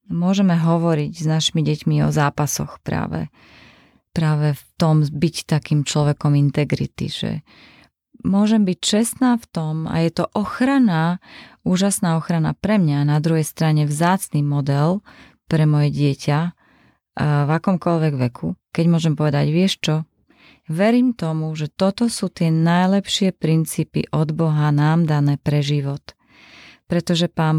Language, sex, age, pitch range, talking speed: Czech, female, 30-49, 150-185 Hz, 135 wpm